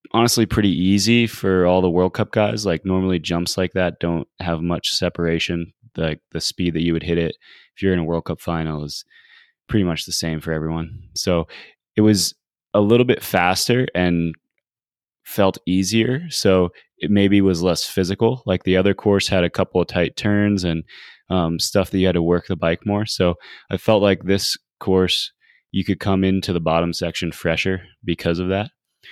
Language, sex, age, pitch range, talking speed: English, male, 20-39, 85-100 Hz, 195 wpm